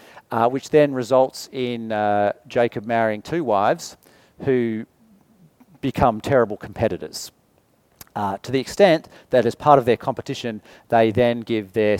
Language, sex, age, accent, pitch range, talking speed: English, male, 40-59, Australian, 110-135 Hz, 140 wpm